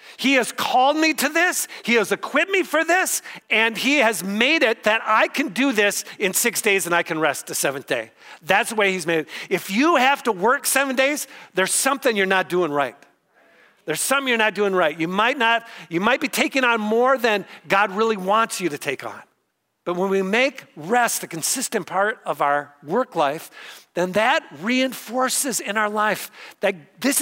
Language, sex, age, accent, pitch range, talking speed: English, male, 50-69, American, 155-240 Hz, 205 wpm